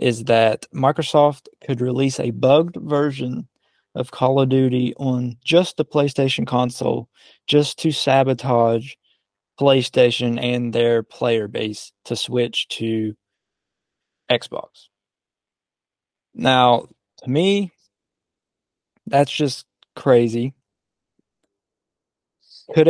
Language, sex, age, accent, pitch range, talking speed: English, male, 20-39, American, 120-145 Hz, 95 wpm